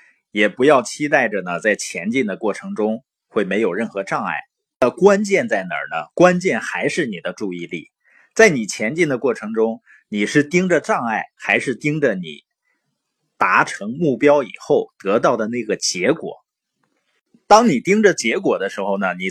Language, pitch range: Chinese, 135-220 Hz